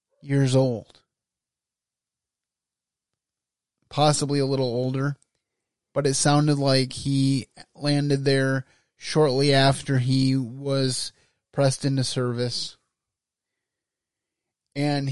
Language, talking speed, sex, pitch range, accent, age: English, 85 wpm, male, 125-145 Hz, American, 30-49